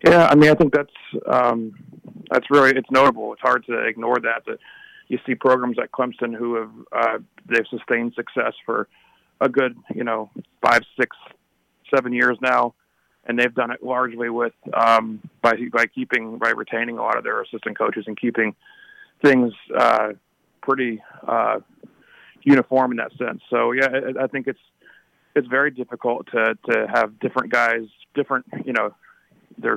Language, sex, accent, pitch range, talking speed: English, male, American, 115-130 Hz, 170 wpm